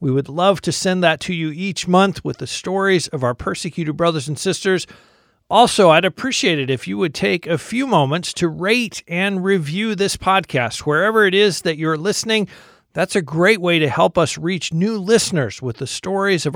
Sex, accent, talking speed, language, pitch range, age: male, American, 205 wpm, English, 155-195 Hz, 50-69